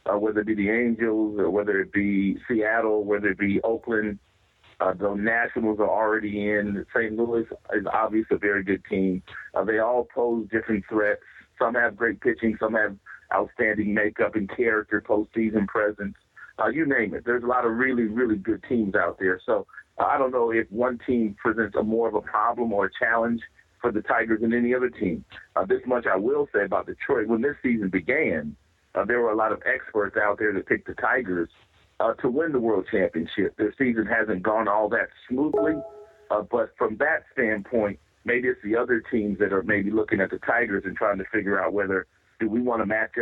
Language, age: English, 50-69